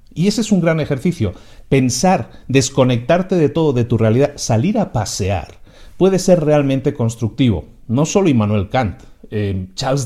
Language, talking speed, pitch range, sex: Spanish, 155 wpm, 110-145 Hz, male